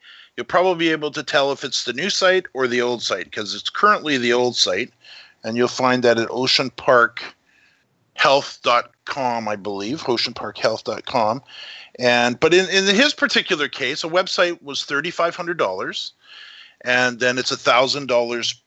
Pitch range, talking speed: 115-150 Hz, 145 wpm